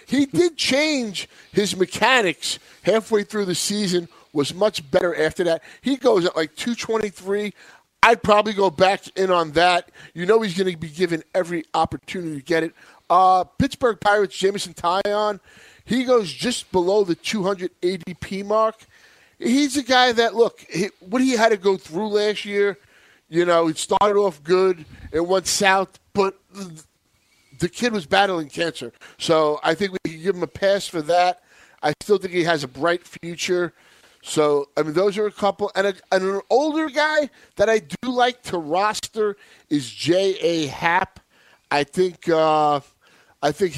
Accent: American